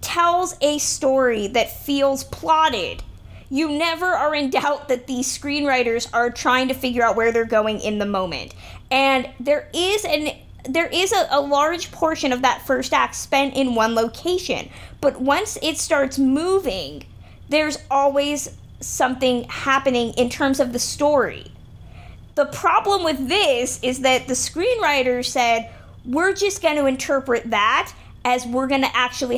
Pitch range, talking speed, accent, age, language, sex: 240-300 Hz, 155 wpm, American, 20-39, English, female